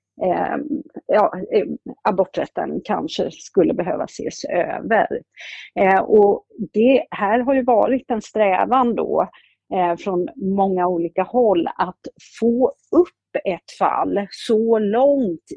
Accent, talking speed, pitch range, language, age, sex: native, 100 wpm, 185-245 Hz, Swedish, 40-59, female